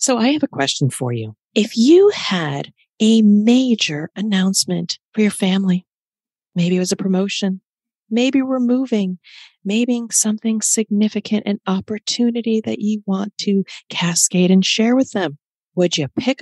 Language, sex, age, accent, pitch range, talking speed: English, female, 40-59, American, 180-235 Hz, 150 wpm